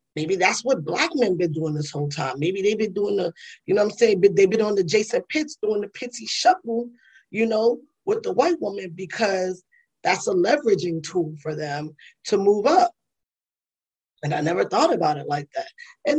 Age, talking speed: 20-39, 210 wpm